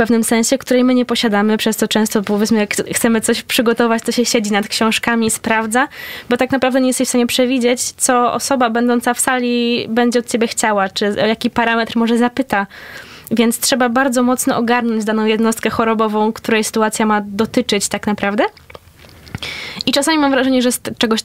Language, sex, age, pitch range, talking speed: Polish, female, 10-29, 215-245 Hz, 185 wpm